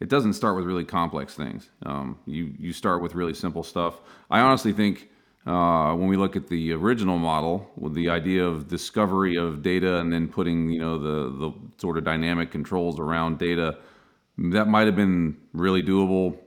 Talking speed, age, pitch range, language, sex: 190 wpm, 40-59, 85-100 Hz, English, male